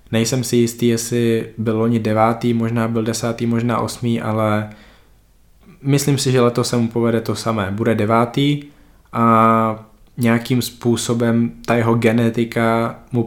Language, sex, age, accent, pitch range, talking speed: Czech, male, 20-39, native, 105-115 Hz, 140 wpm